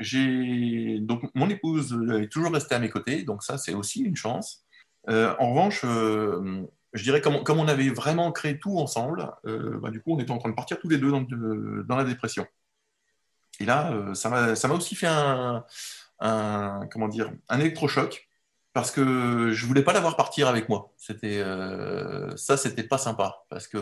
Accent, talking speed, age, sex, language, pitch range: French, 205 wpm, 20-39, male, French, 110-145 Hz